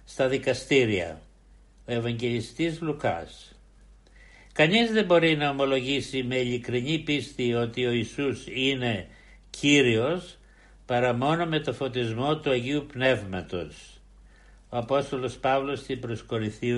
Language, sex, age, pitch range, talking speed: Greek, male, 60-79, 120-155 Hz, 110 wpm